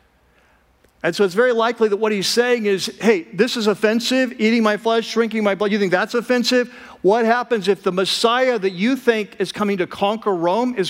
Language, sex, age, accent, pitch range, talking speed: English, male, 50-69, American, 155-210 Hz, 210 wpm